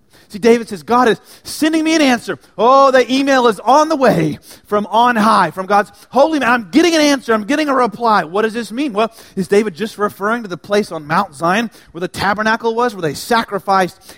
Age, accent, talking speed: 30-49, American, 225 wpm